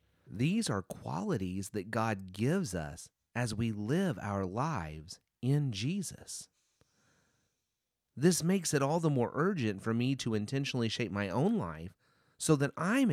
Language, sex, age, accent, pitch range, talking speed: English, male, 30-49, American, 100-145 Hz, 145 wpm